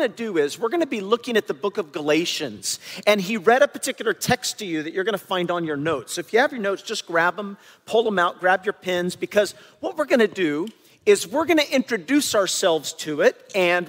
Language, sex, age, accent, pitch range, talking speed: English, male, 40-59, American, 200-275 Hz, 255 wpm